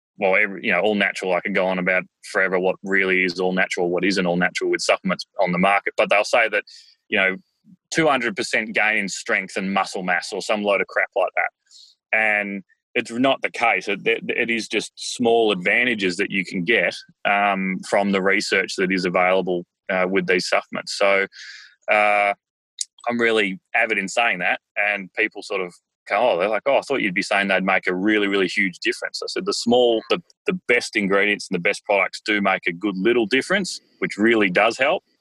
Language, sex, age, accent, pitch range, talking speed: English, male, 20-39, Australian, 95-115 Hz, 215 wpm